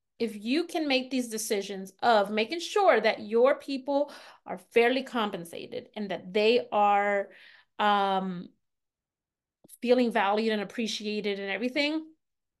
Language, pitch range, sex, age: English, 215-275 Hz, female, 20-39